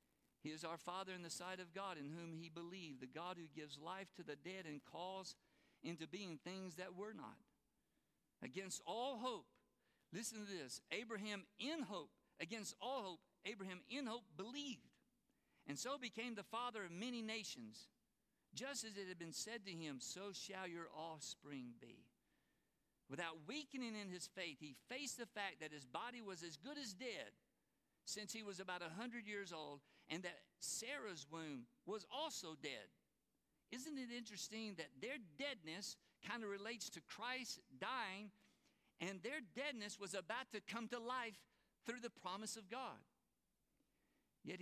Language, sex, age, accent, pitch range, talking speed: English, male, 50-69, American, 165-230 Hz, 165 wpm